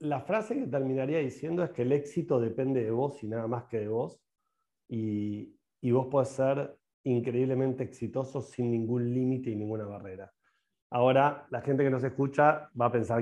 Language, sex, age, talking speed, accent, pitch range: Spanish, male, 40-59, 180 wpm, Argentinian, 115-145 Hz